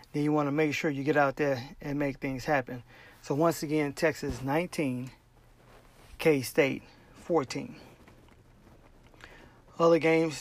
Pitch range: 140-160 Hz